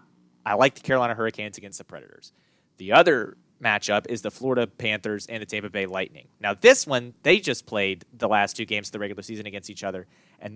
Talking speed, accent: 215 wpm, American